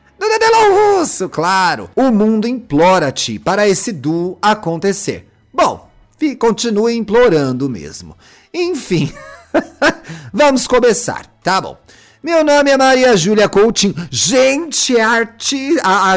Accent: Brazilian